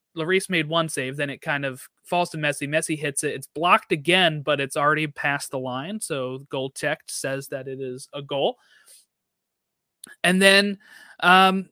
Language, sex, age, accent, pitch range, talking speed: English, male, 30-49, American, 135-185 Hz, 170 wpm